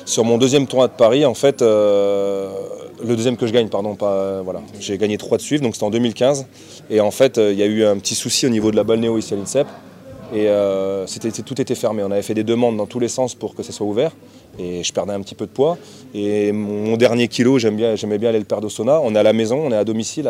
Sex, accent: male, French